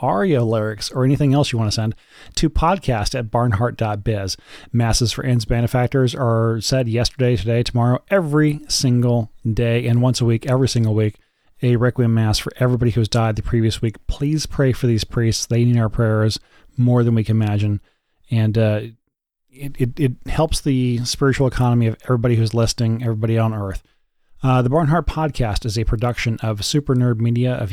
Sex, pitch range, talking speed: male, 115-135 Hz, 185 wpm